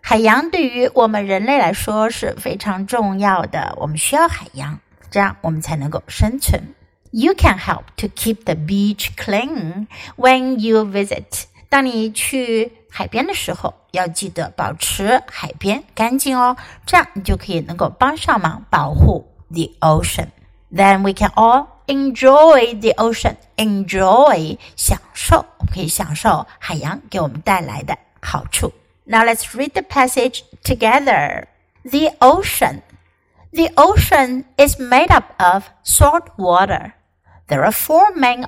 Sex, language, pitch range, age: female, Chinese, 195-270 Hz, 60-79